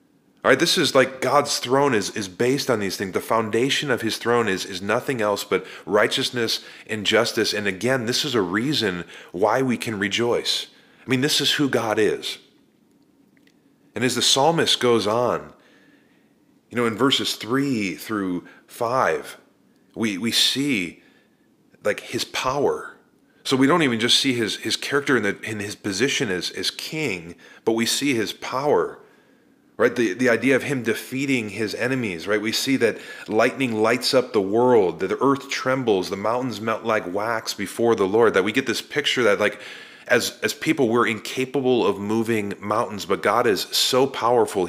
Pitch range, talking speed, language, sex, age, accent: 110-135 Hz, 180 wpm, English, male, 30-49, American